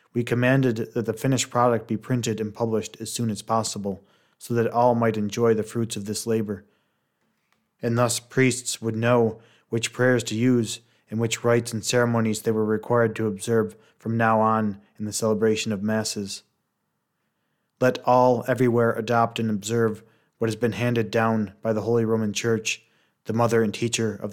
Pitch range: 110-120 Hz